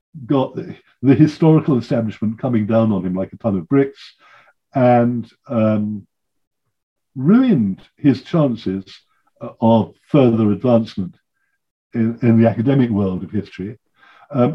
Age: 60-79